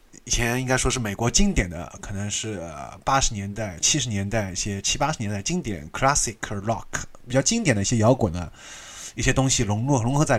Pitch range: 100-130 Hz